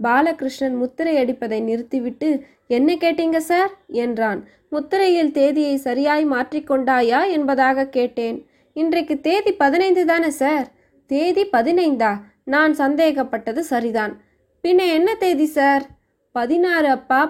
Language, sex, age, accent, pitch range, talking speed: Tamil, female, 20-39, native, 250-320 Hz, 105 wpm